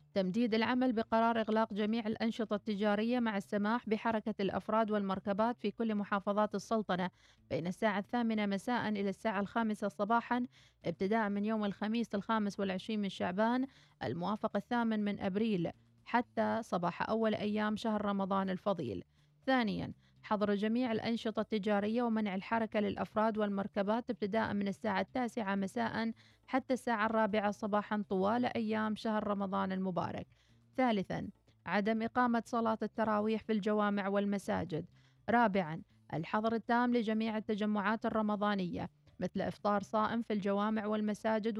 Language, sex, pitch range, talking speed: Arabic, female, 200-225 Hz, 125 wpm